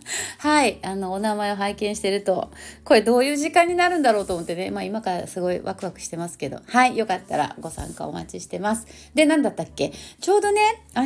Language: Japanese